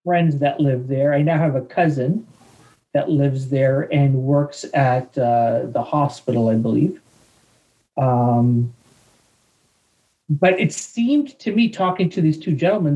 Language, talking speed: English, 145 wpm